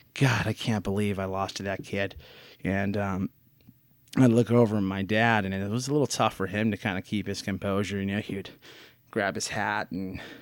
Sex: male